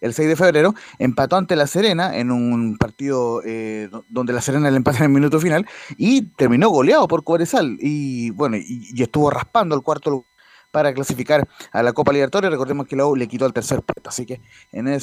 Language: Spanish